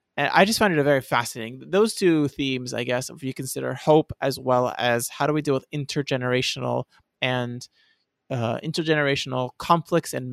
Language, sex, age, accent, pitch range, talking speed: English, male, 30-49, American, 125-160 Hz, 185 wpm